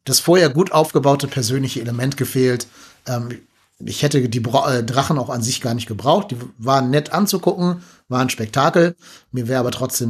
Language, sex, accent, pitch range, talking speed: German, male, German, 120-145 Hz, 170 wpm